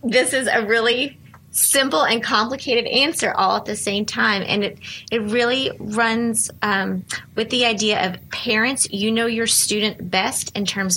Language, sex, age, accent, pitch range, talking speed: English, female, 30-49, American, 195-235 Hz, 170 wpm